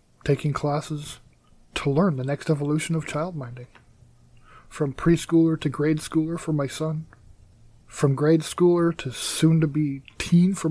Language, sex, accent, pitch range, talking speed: English, male, American, 145-170 Hz, 140 wpm